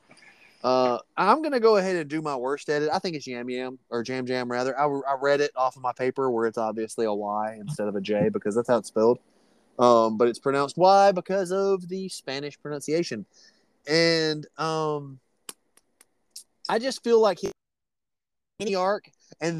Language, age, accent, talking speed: English, 30-49, American, 190 wpm